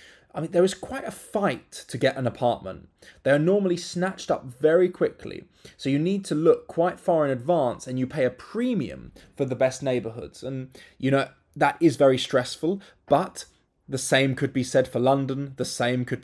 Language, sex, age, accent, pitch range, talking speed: English, male, 20-39, British, 120-160 Hz, 200 wpm